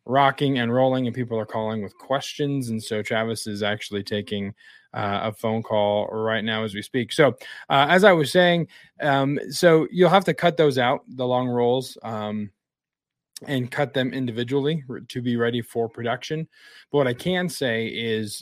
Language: English